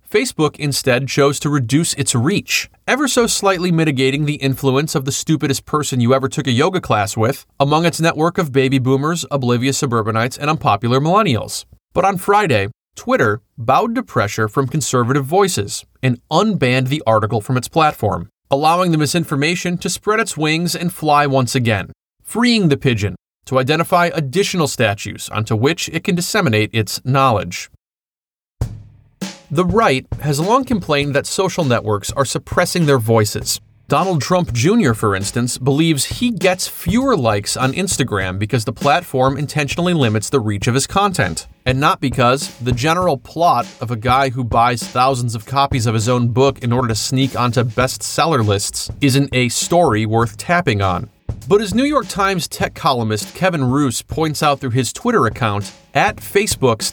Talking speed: 170 wpm